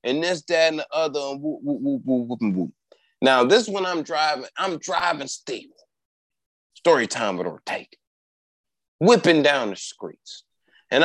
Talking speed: 140 wpm